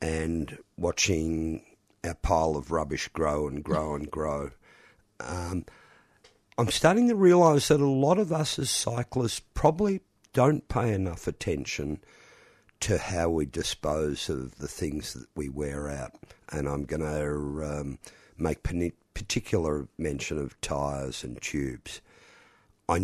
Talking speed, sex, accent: 135 wpm, male, Australian